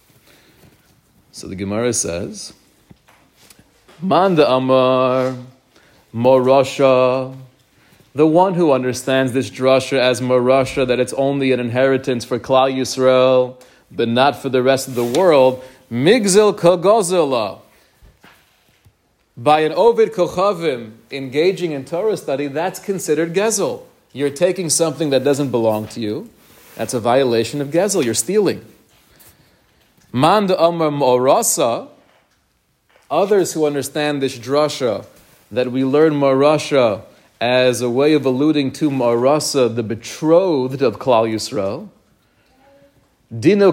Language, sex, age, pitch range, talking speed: English, male, 40-59, 125-160 Hz, 115 wpm